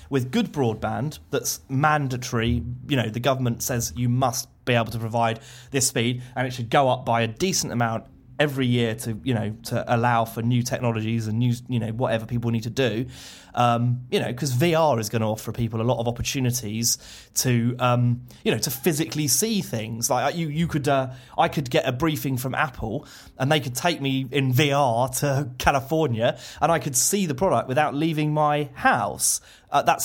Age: 30-49